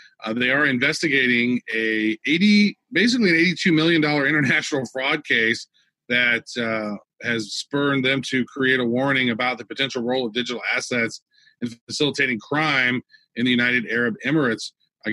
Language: English